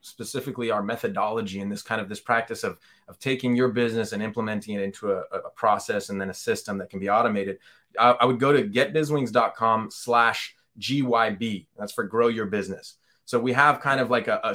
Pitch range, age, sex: 110-135 Hz, 20-39, male